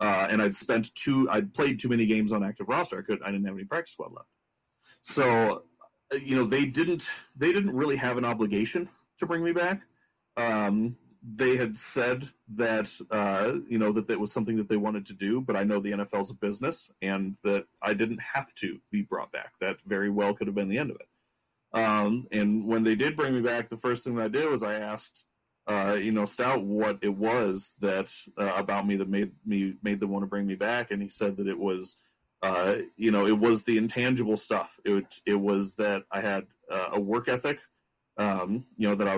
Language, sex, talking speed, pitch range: English, male, 225 wpm, 100-115 Hz